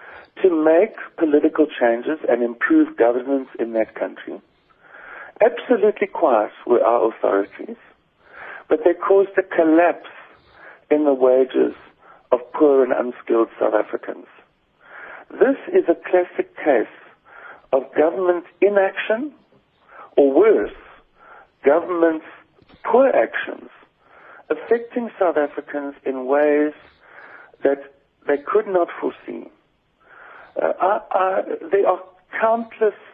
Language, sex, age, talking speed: English, male, 60-79, 100 wpm